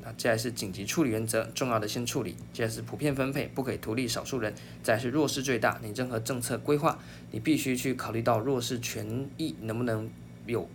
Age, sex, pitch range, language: 20-39, male, 105-135 Hz, Chinese